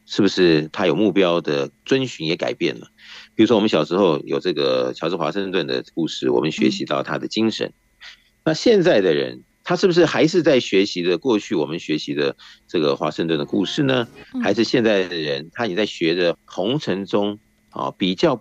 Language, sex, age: Chinese, male, 50-69